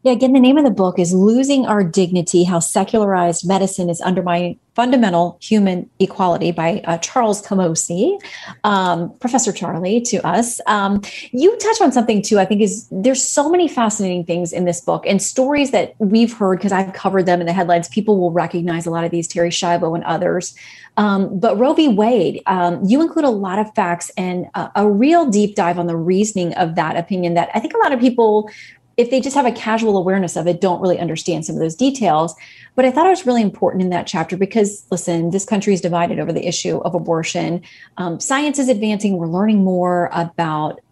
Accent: American